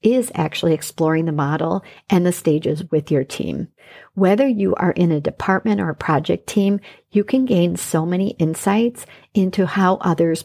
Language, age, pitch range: English, 50-69, 155-195 Hz